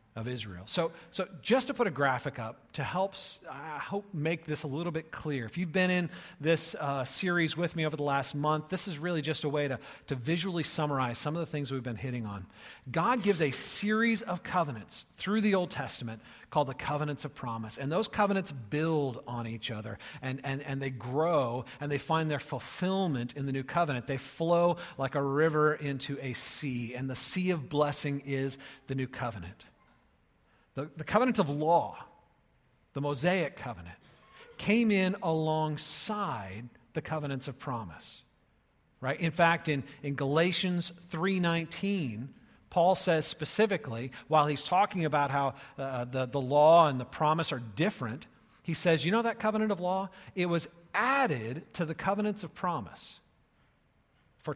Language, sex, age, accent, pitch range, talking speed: English, male, 40-59, American, 135-175 Hz, 175 wpm